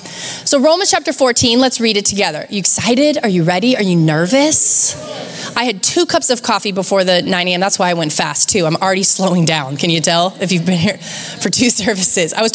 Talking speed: 230 wpm